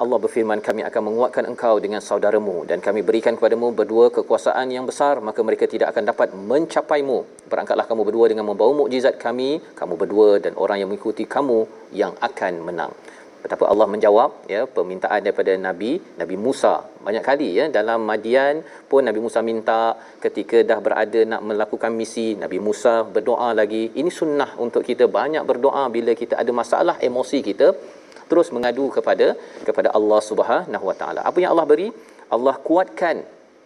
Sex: male